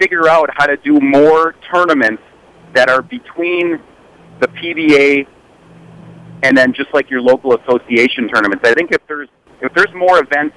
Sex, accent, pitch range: male, American, 130-180 Hz